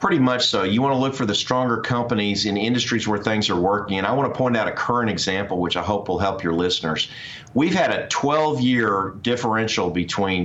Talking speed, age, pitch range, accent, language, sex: 225 wpm, 40-59, 105-125 Hz, American, English, male